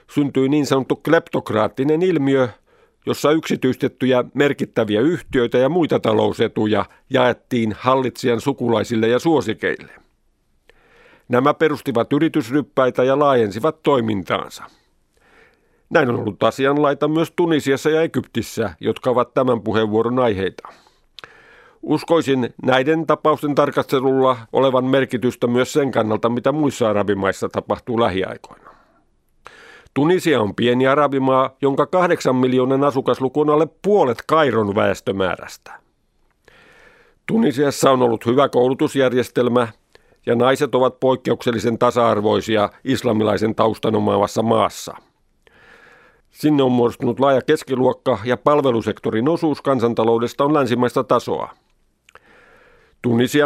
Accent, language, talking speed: native, Finnish, 100 wpm